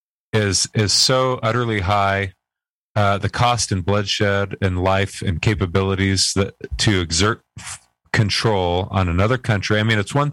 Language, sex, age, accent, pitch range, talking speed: English, male, 40-59, American, 95-105 Hz, 150 wpm